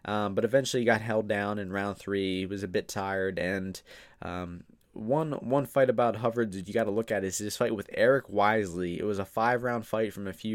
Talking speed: 245 wpm